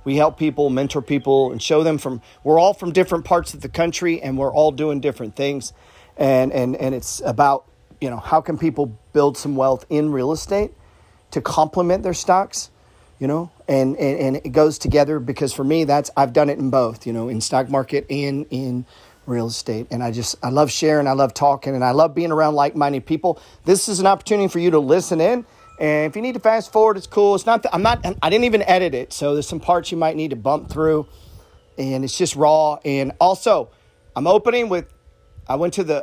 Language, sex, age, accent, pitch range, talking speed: English, male, 40-59, American, 135-170 Hz, 225 wpm